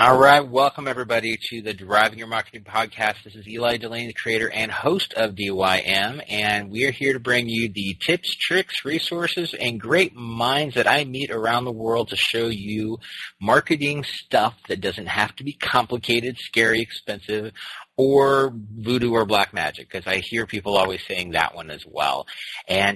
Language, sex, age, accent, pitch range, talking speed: English, male, 30-49, American, 105-130 Hz, 180 wpm